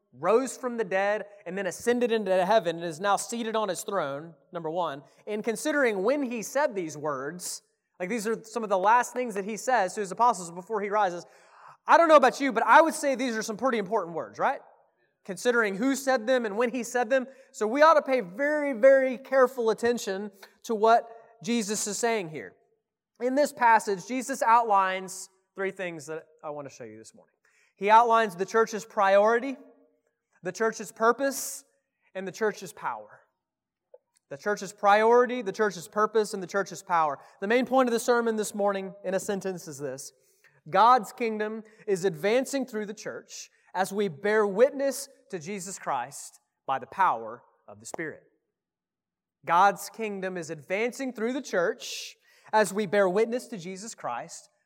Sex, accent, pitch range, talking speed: male, American, 195-250 Hz, 180 wpm